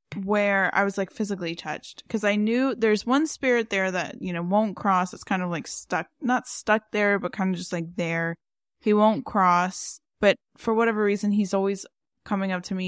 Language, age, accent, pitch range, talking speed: English, 10-29, American, 185-220 Hz, 210 wpm